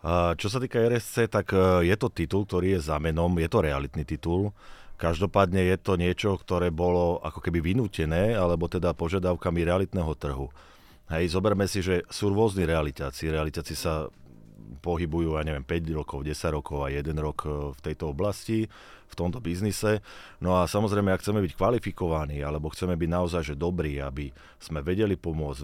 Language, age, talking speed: Slovak, 30-49, 165 wpm